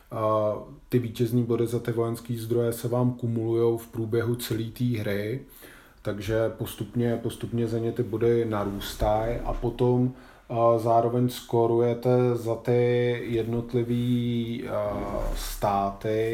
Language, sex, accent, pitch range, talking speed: Czech, male, native, 105-120 Hz, 115 wpm